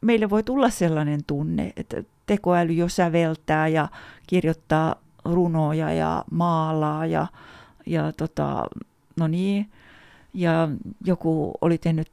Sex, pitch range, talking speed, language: female, 155-185 Hz, 115 wpm, Finnish